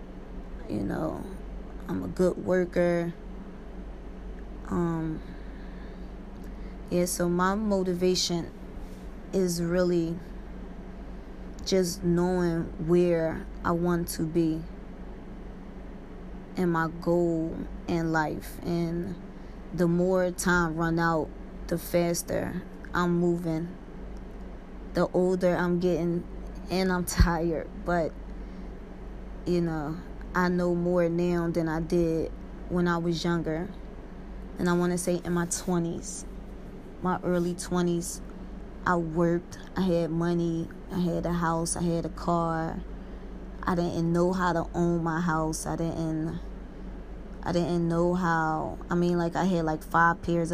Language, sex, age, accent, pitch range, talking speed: English, female, 20-39, American, 165-180 Hz, 120 wpm